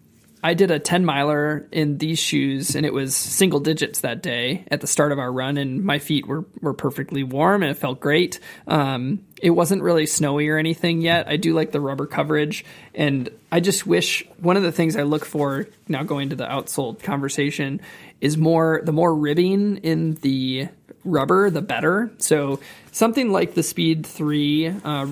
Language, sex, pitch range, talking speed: English, male, 145-170 Hz, 190 wpm